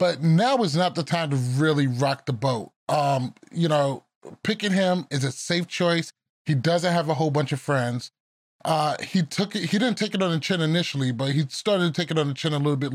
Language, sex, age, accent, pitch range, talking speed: English, male, 20-39, American, 135-175 Hz, 240 wpm